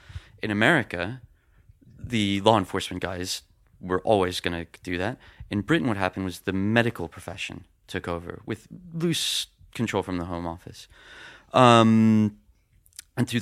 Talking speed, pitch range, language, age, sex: 145 wpm, 90-110 Hz, English, 30-49, male